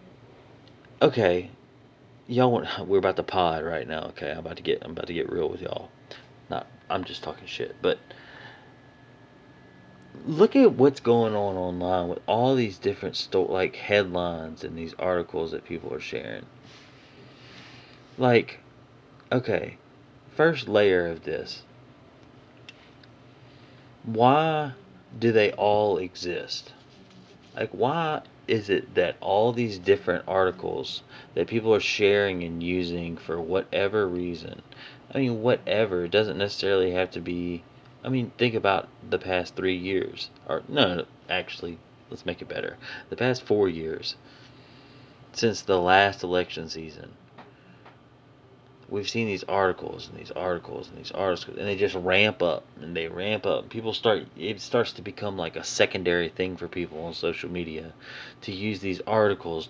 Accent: American